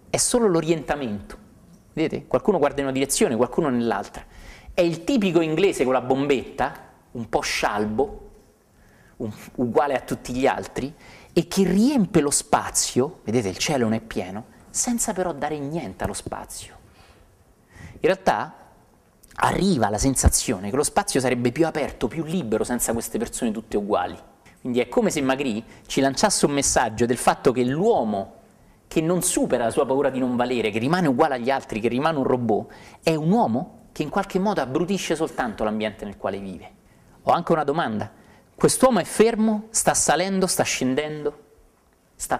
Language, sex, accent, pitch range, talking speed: Italian, male, native, 120-180 Hz, 165 wpm